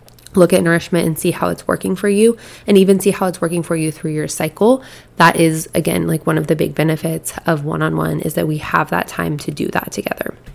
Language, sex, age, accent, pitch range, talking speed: English, female, 20-39, American, 155-175 Hz, 240 wpm